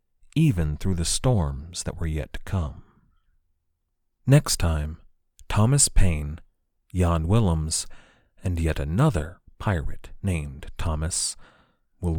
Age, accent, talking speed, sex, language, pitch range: 40-59, American, 110 wpm, male, English, 80-100 Hz